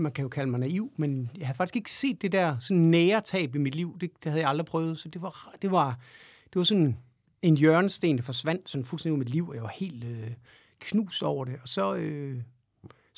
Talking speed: 240 wpm